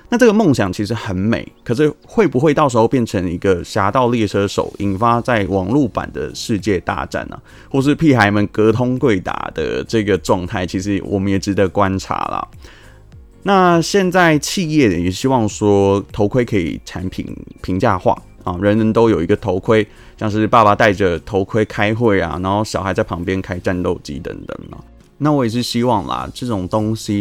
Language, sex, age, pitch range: Chinese, male, 20-39, 95-125 Hz